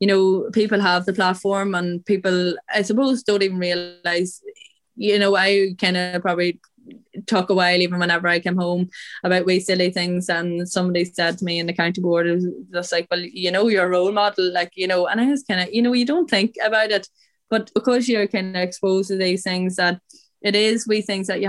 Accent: Irish